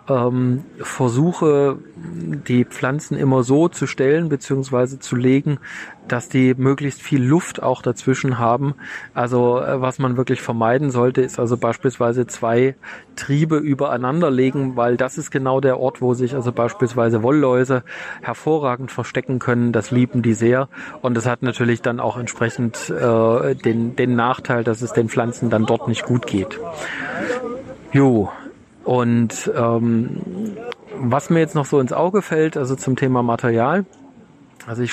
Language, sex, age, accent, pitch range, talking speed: German, male, 40-59, German, 120-140 Hz, 150 wpm